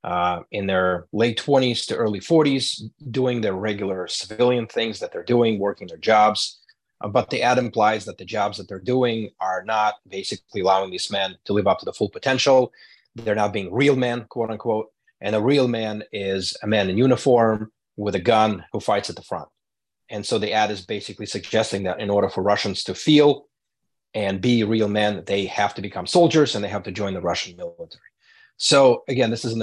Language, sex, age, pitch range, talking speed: English, male, 30-49, 100-120 Hz, 210 wpm